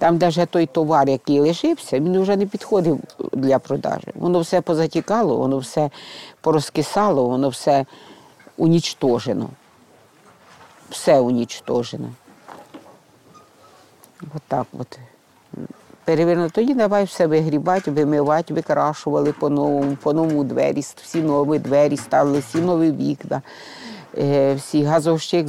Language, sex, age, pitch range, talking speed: Ukrainian, female, 50-69, 145-195 Hz, 105 wpm